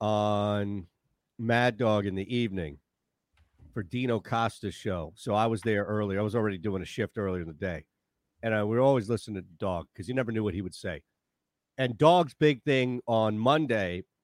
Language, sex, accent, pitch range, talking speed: English, male, American, 110-150 Hz, 190 wpm